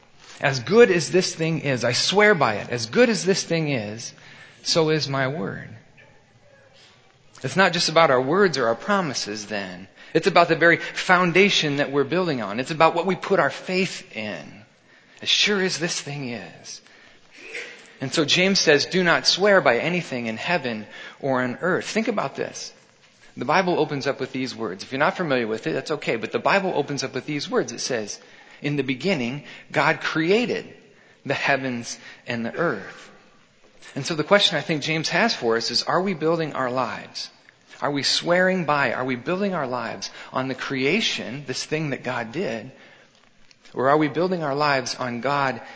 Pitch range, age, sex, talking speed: 130-175 Hz, 30-49, male, 190 wpm